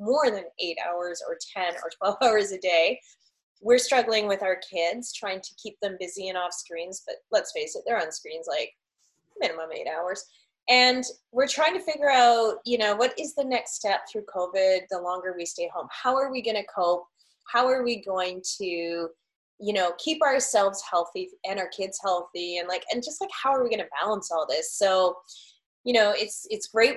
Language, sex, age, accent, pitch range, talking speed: English, female, 20-39, American, 185-255 Hz, 205 wpm